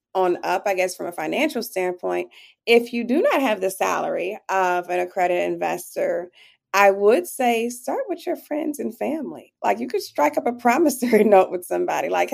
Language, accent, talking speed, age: English, American, 190 wpm, 30-49